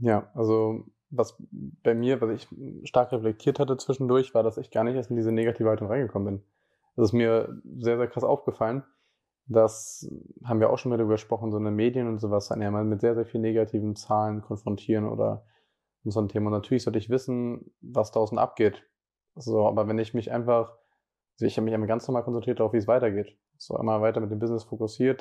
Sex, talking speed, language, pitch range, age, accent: male, 210 wpm, German, 110-120 Hz, 20-39, German